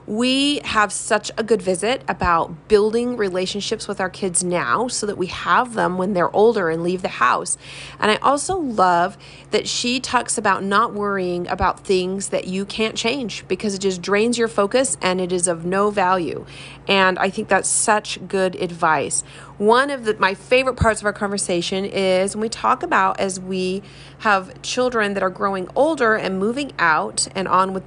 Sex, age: female, 30-49